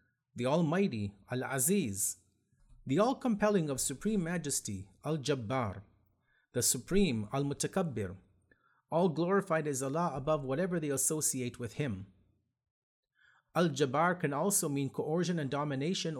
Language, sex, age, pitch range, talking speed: English, male, 30-49, 125-175 Hz, 105 wpm